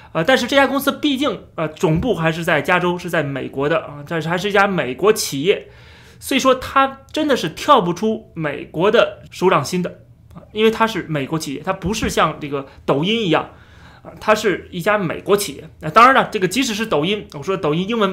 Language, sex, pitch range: Chinese, male, 160-225 Hz